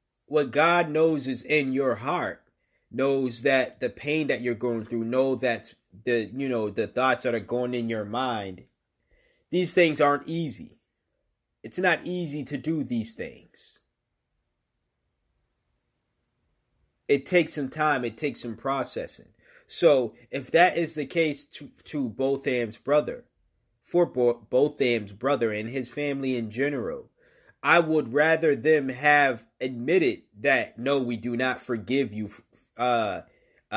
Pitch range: 125-155 Hz